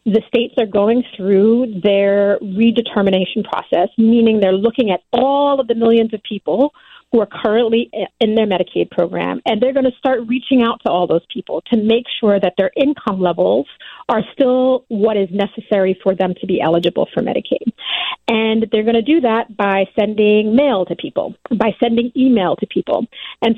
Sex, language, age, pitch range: female, English, 40-59, 200-250 Hz